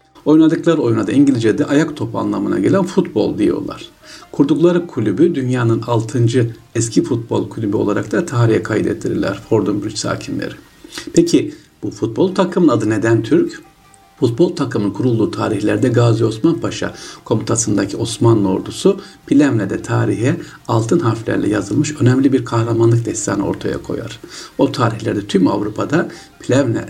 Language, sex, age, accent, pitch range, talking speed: Turkish, male, 60-79, native, 105-150 Hz, 125 wpm